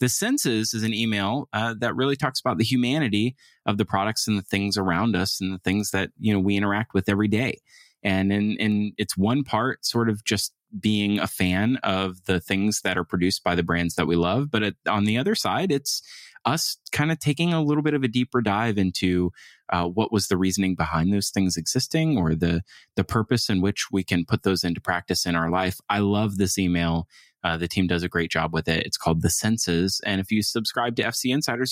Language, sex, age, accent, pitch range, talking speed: English, male, 20-39, American, 90-115 Hz, 230 wpm